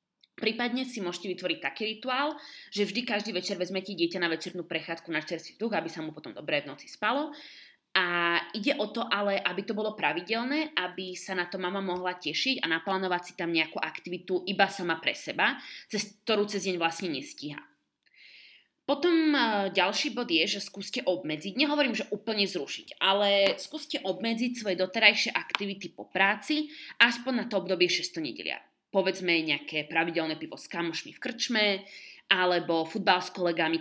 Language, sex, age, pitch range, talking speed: Slovak, female, 20-39, 175-235 Hz, 170 wpm